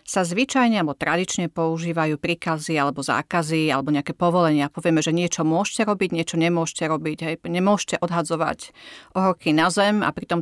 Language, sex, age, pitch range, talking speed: Slovak, female, 40-59, 165-210 Hz, 155 wpm